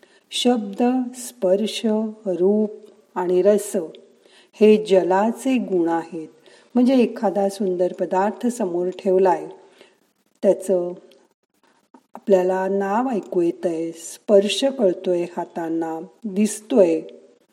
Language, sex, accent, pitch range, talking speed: Marathi, female, native, 180-215 Hz, 80 wpm